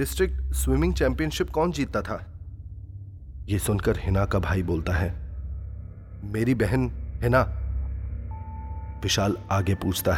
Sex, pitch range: male, 85-100 Hz